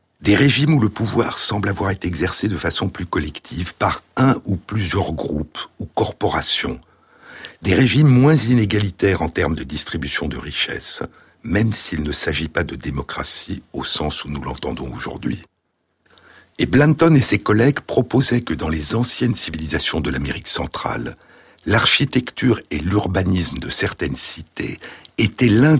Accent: French